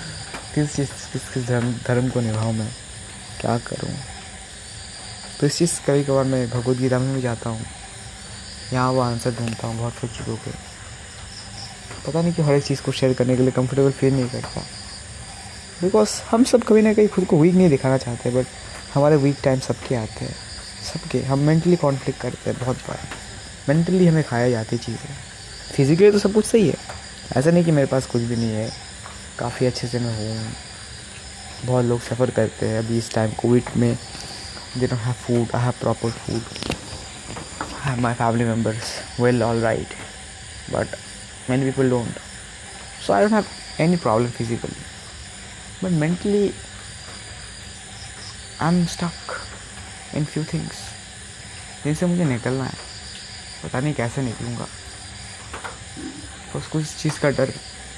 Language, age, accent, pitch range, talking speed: Hindi, 20-39, native, 105-135 Hz, 155 wpm